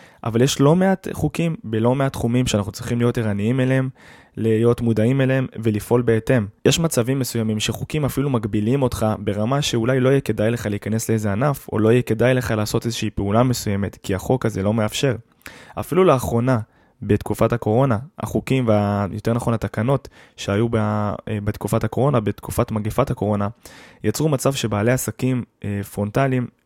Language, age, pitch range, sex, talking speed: Hebrew, 20-39, 105-125 Hz, male, 150 wpm